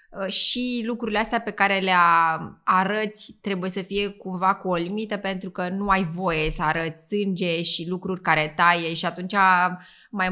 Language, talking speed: Romanian, 170 wpm